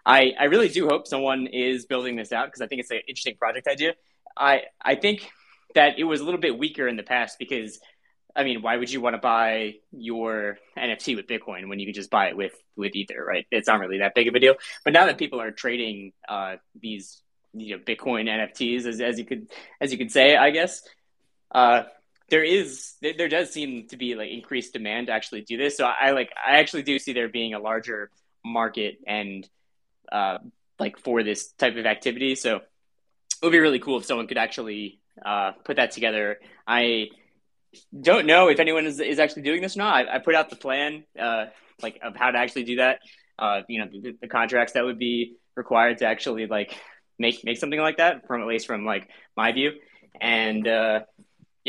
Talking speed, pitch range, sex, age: 215 wpm, 110-135 Hz, male, 20-39